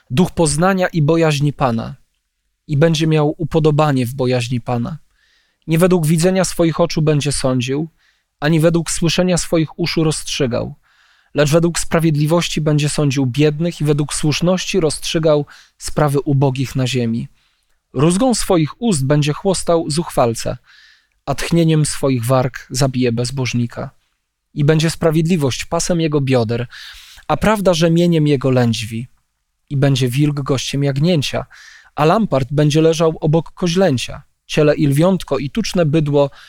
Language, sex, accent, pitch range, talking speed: Polish, male, native, 135-170 Hz, 130 wpm